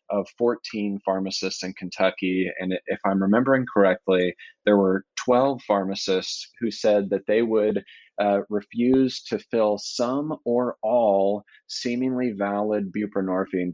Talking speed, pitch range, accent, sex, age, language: 125 wpm, 95-120 Hz, American, male, 20-39, English